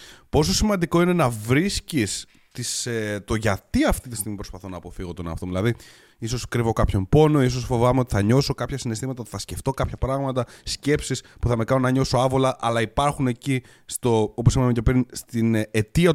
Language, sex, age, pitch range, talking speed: Greek, male, 30-49, 110-135 Hz, 180 wpm